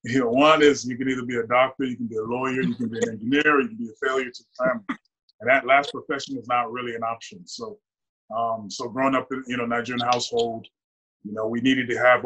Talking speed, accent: 265 wpm, American